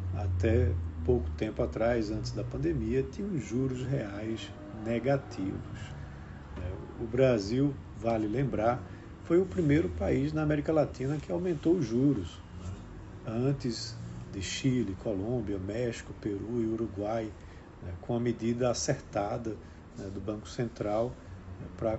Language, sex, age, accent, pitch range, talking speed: Portuguese, male, 50-69, Brazilian, 95-130 Hz, 115 wpm